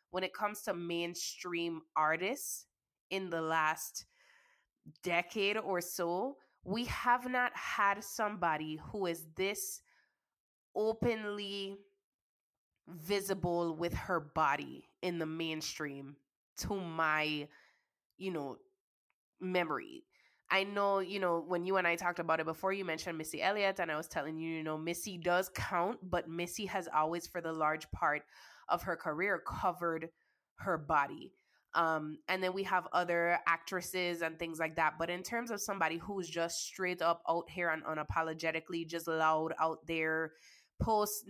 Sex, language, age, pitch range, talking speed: female, English, 20-39, 165-195 Hz, 150 wpm